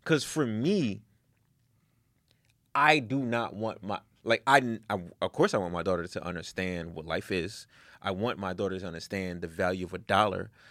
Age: 30-49